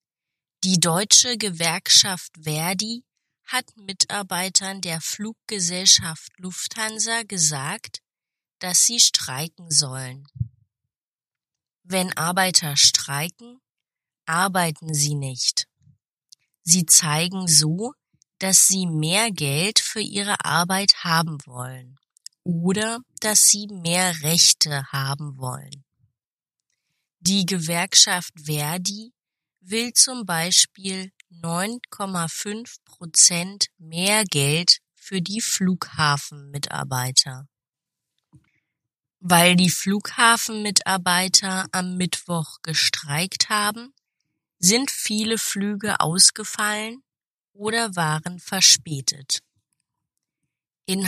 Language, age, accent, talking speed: German, 20-39, German, 80 wpm